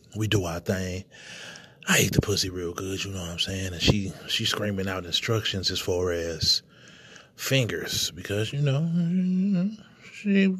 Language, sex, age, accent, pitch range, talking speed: English, male, 30-49, American, 95-135 Hz, 165 wpm